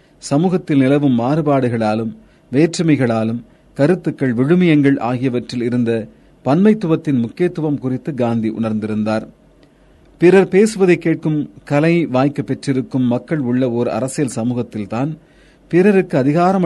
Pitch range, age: 125-160 Hz, 40-59